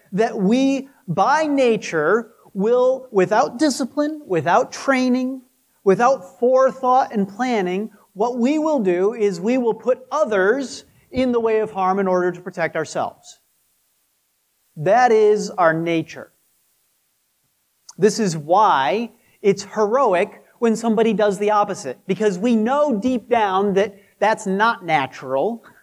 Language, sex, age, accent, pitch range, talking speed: English, male, 40-59, American, 185-240 Hz, 130 wpm